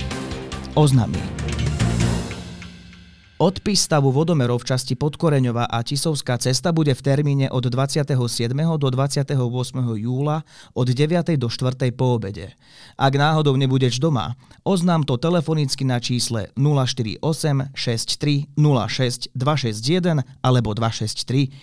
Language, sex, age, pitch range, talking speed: Slovak, male, 30-49, 120-150 Hz, 105 wpm